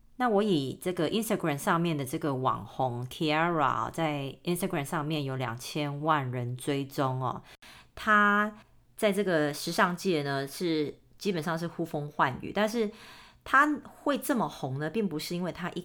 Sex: female